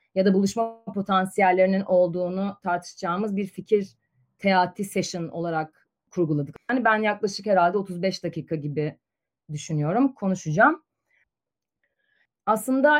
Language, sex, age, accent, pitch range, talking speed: Turkish, female, 30-49, native, 175-225 Hz, 100 wpm